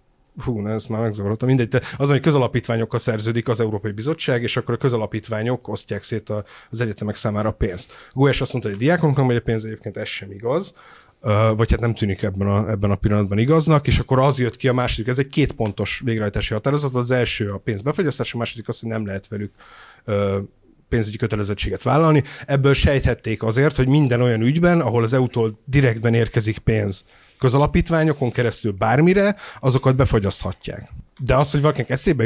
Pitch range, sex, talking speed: 110-130 Hz, male, 180 wpm